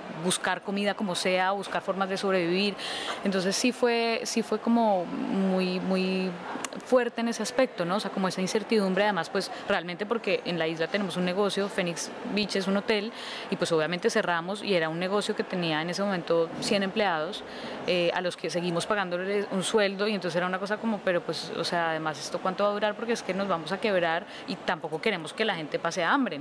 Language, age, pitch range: Spanish, 20-39, 180-220 Hz